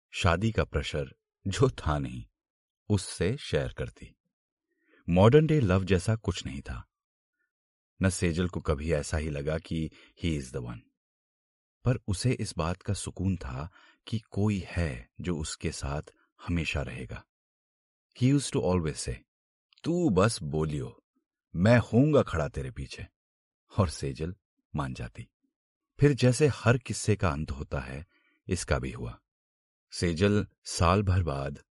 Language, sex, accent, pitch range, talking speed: Hindi, male, native, 75-105 Hz, 140 wpm